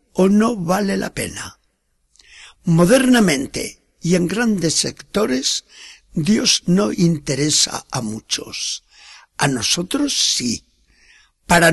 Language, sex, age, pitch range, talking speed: Spanish, male, 60-79, 155-215 Hz, 95 wpm